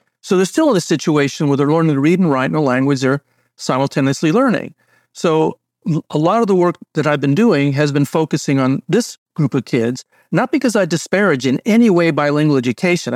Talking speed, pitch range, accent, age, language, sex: 210 wpm, 135-165 Hz, American, 50-69, English, male